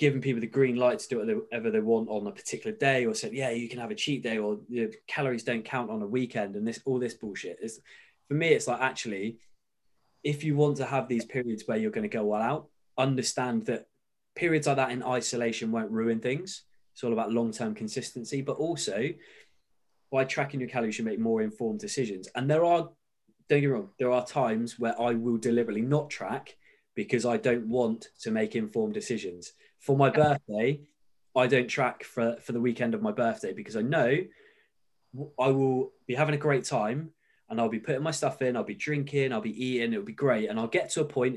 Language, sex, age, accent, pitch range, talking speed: English, male, 20-39, British, 115-150 Hz, 220 wpm